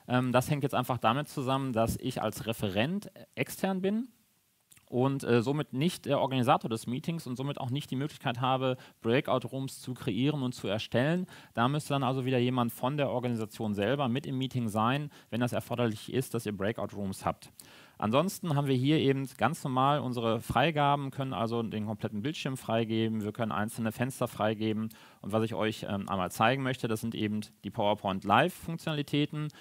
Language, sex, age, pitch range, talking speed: German, male, 30-49, 110-135 Hz, 180 wpm